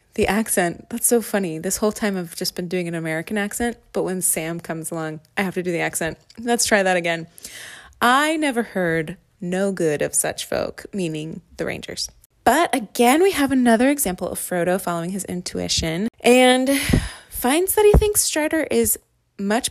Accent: American